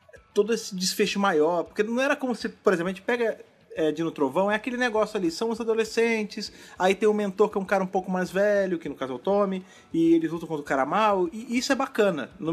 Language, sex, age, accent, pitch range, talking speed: Portuguese, male, 40-59, Brazilian, 175-225 Hz, 260 wpm